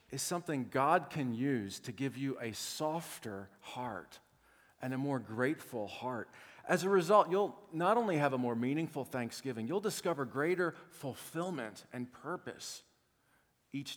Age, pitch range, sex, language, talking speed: 40-59, 105-140 Hz, male, English, 145 wpm